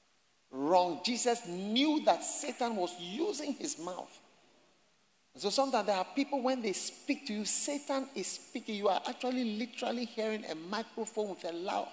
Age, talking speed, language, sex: 50-69, 160 wpm, English, male